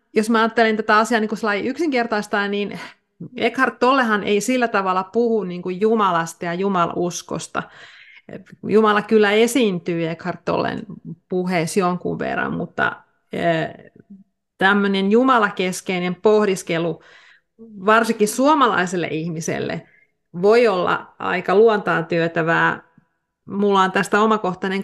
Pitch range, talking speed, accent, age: 180-220 Hz, 105 wpm, native, 30-49